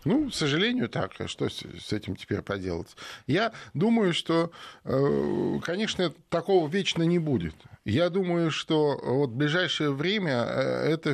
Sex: male